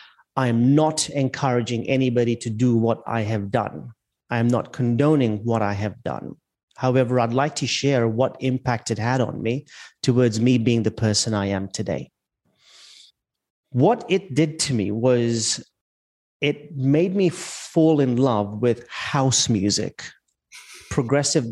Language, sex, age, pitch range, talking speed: English, male, 30-49, 115-140 Hz, 150 wpm